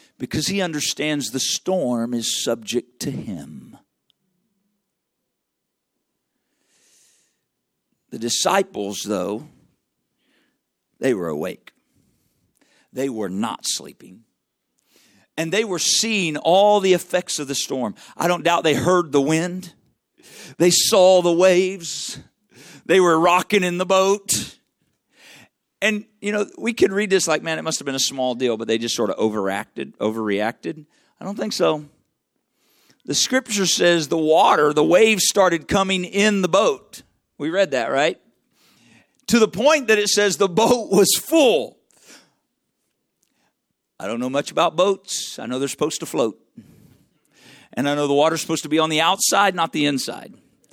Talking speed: 150 wpm